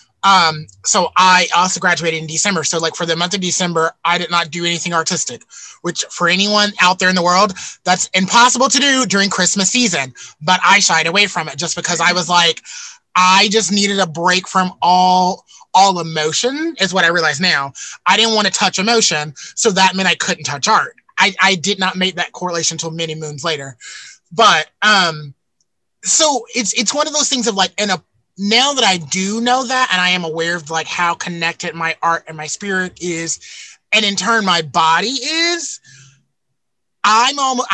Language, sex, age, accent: English, male, 20-39, American